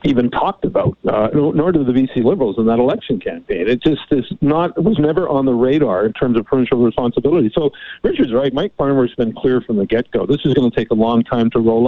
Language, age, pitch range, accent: English, 50-69, 120-140 Hz, American